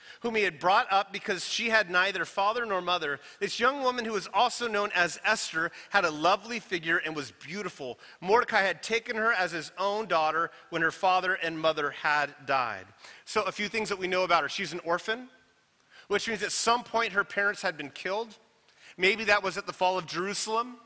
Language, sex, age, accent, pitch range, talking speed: English, male, 30-49, American, 170-225 Hz, 210 wpm